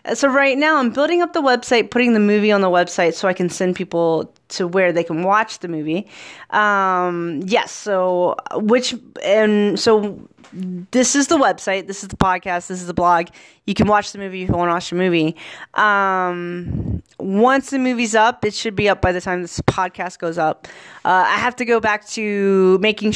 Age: 20-39